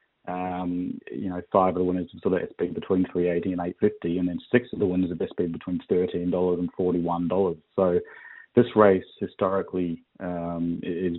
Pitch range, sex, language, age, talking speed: 90-95 Hz, male, English, 30-49, 205 wpm